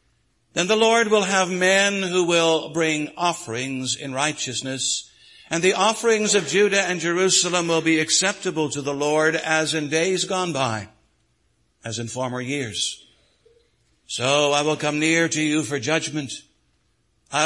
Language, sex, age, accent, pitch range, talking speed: English, male, 60-79, American, 130-175 Hz, 150 wpm